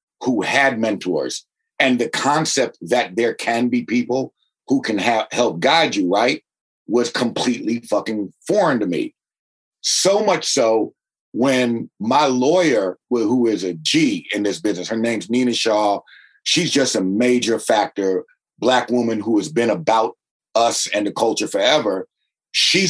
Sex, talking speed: male, 155 wpm